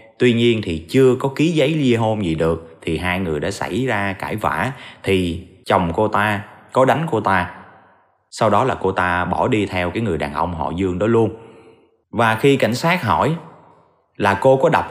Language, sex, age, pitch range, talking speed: Vietnamese, male, 20-39, 95-130 Hz, 210 wpm